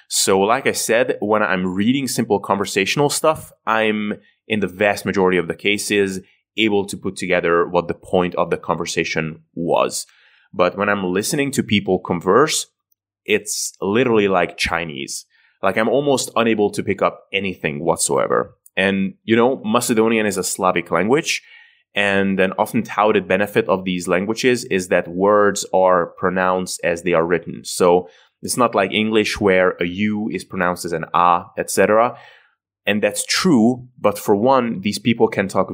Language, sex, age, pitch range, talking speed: English, male, 20-39, 90-110 Hz, 165 wpm